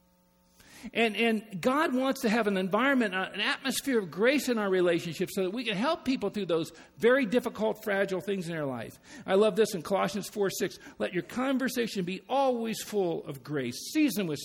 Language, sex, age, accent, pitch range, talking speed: English, male, 50-69, American, 155-235 Hz, 195 wpm